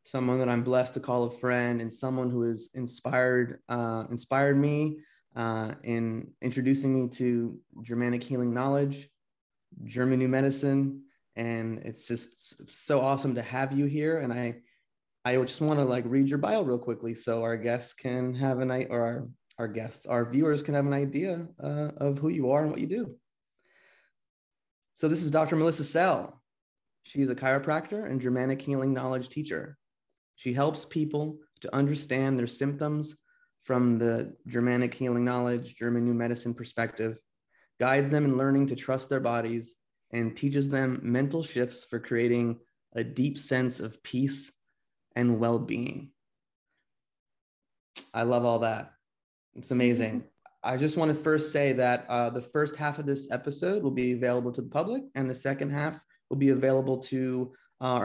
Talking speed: 165 wpm